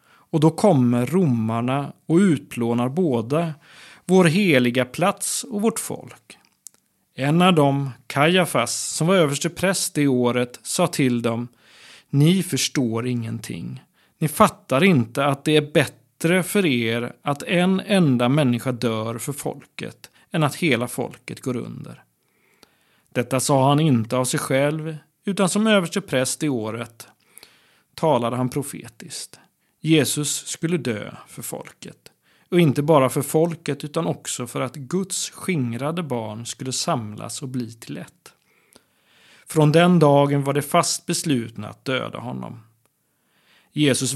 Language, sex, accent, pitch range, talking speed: Swedish, male, native, 125-160 Hz, 135 wpm